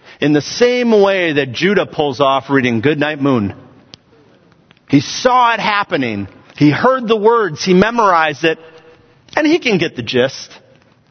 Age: 40-59